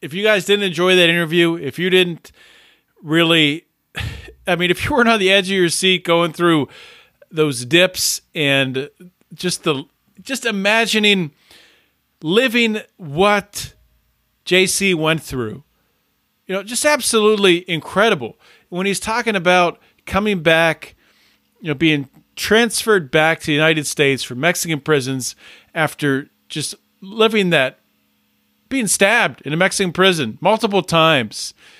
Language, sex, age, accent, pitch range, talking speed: English, male, 40-59, American, 160-210 Hz, 135 wpm